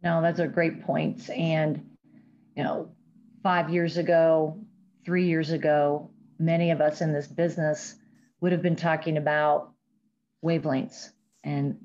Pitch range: 160-190 Hz